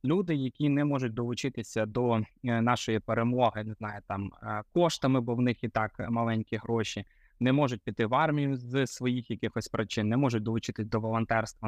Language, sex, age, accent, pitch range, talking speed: Ukrainian, male, 20-39, native, 115-140 Hz, 170 wpm